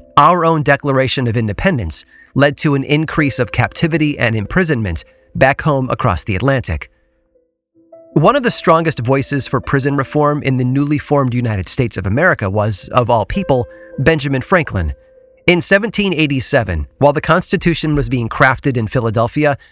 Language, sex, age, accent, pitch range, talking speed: English, male, 30-49, American, 120-155 Hz, 150 wpm